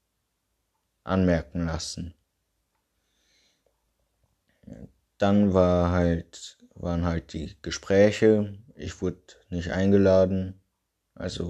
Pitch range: 90-100 Hz